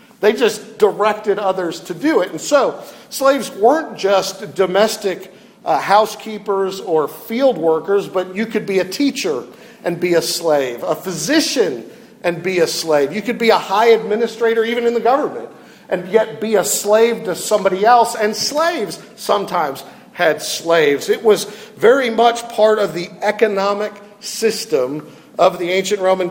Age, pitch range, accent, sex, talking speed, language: 50-69, 180-225 Hz, American, male, 160 wpm, English